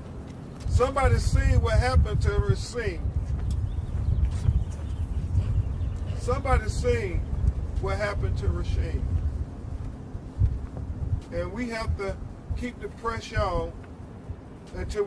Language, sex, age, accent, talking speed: English, male, 40-59, American, 85 wpm